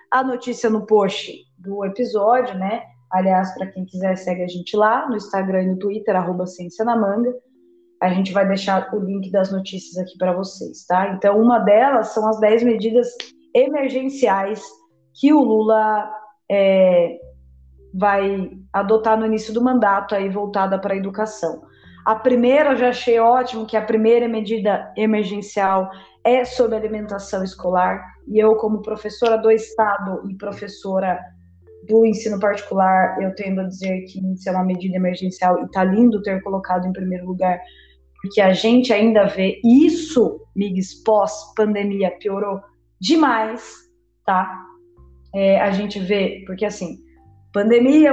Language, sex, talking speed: Portuguese, female, 150 wpm